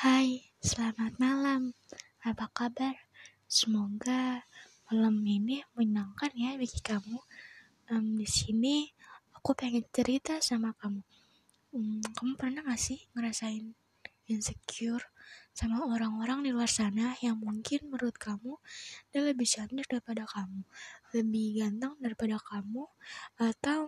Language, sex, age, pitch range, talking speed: Indonesian, female, 20-39, 220-260 Hz, 110 wpm